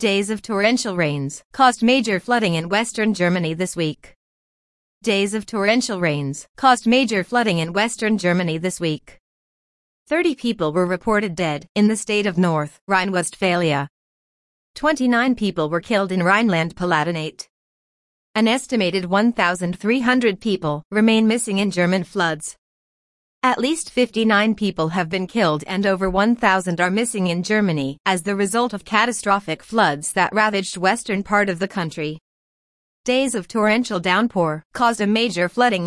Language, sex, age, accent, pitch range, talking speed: English, female, 40-59, American, 175-220 Hz, 140 wpm